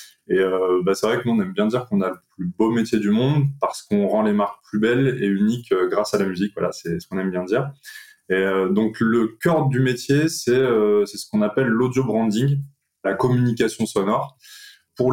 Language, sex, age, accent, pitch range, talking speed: French, male, 20-39, French, 100-135 Hz, 230 wpm